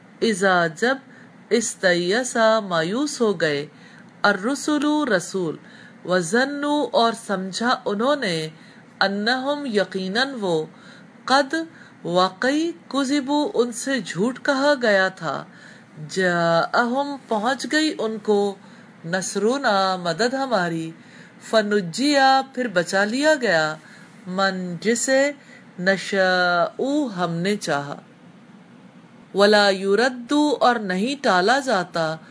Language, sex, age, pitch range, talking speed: English, female, 50-69, 185-255 Hz, 80 wpm